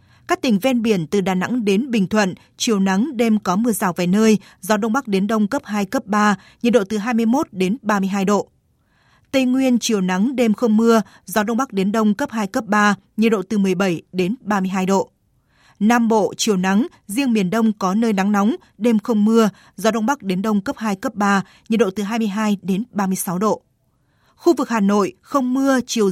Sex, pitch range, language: female, 200-235 Hz, Vietnamese